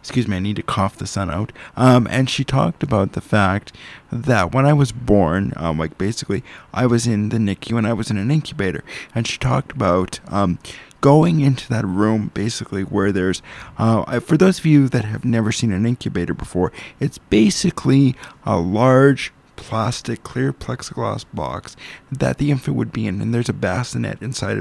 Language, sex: English, male